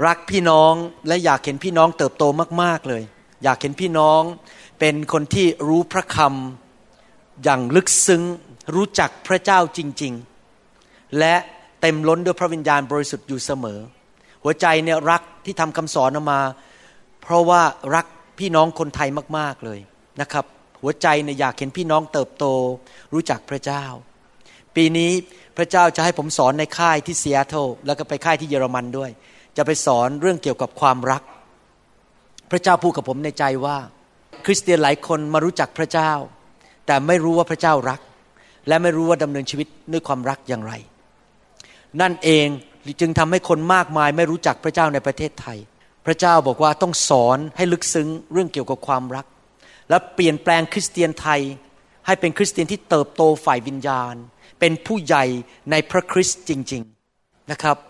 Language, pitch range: Thai, 140-170 Hz